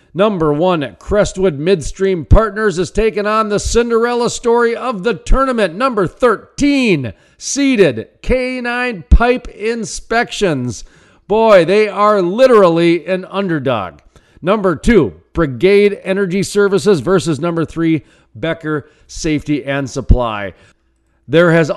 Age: 40-59